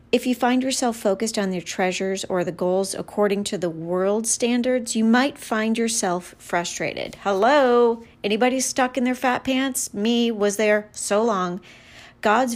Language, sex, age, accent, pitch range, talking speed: English, female, 40-59, American, 180-230 Hz, 160 wpm